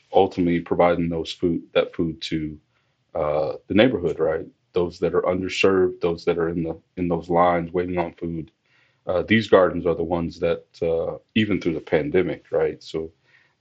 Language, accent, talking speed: English, American, 180 wpm